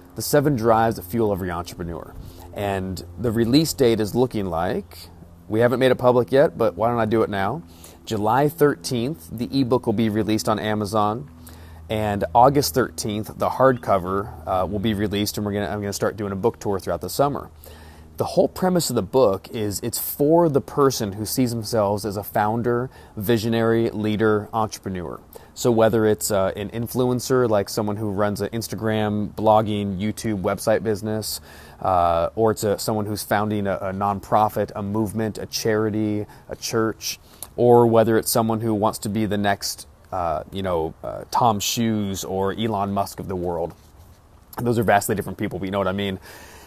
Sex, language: male, English